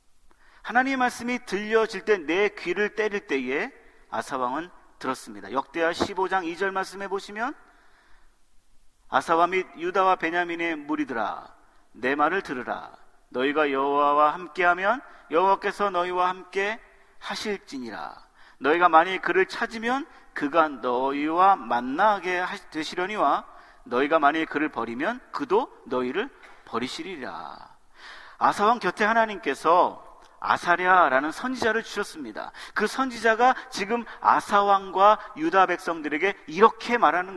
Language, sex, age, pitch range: Korean, male, 40-59, 175-240 Hz